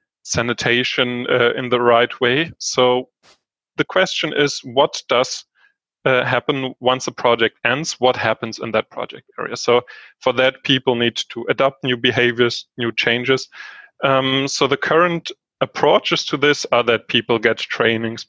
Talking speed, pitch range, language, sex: 155 wpm, 120-150 Hz, English, male